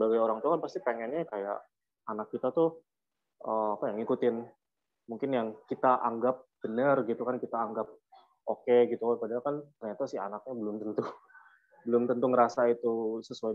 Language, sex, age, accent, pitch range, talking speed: Indonesian, male, 20-39, native, 110-145 Hz, 165 wpm